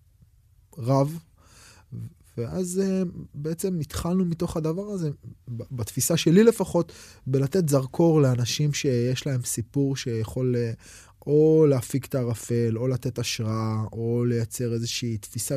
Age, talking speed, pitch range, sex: 20-39, 110 wpm, 115-155 Hz, male